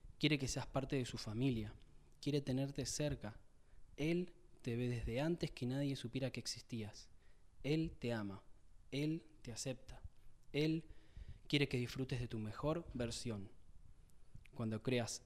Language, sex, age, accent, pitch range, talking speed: Spanish, male, 20-39, Argentinian, 110-145 Hz, 140 wpm